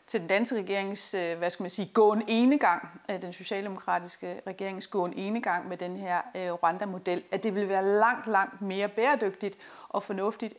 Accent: native